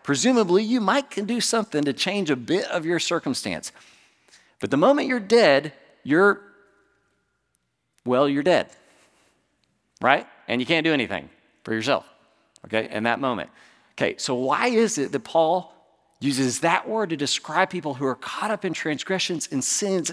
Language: English